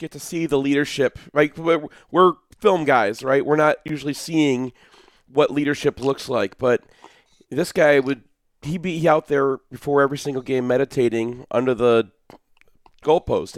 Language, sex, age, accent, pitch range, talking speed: English, male, 40-59, American, 125-160 Hz, 150 wpm